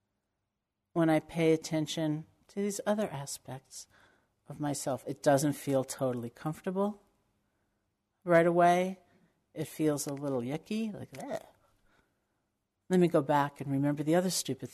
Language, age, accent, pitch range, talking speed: English, 50-69, American, 125-160 Hz, 135 wpm